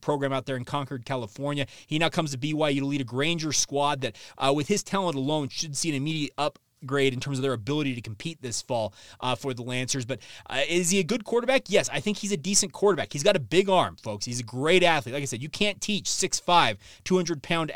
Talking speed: 245 wpm